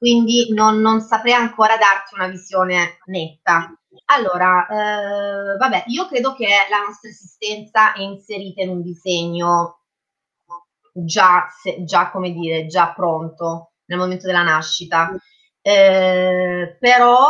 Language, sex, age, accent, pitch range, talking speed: Italian, female, 30-49, native, 175-220 Hz, 120 wpm